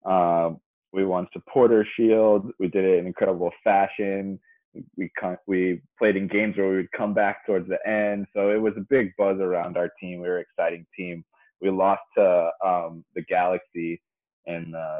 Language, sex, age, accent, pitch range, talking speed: English, male, 20-39, American, 85-100 Hz, 190 wpm